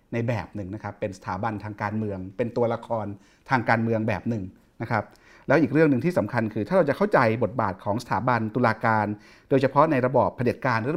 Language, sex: Thai, male